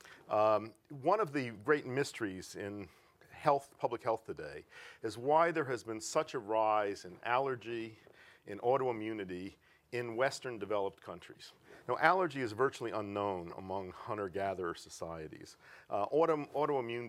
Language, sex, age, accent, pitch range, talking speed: English, male, 50-69, American, 100-130 Hz, 130 wpm